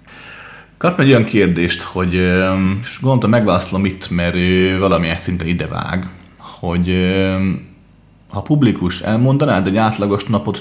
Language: Hungarian